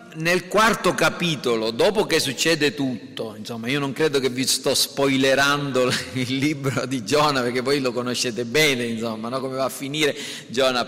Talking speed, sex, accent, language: 170 wpm, male, native, Italian